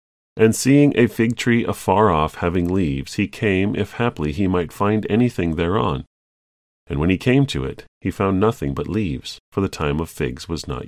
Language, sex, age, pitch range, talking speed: English, male, 40-59, 75-105 Hz, 200 wpm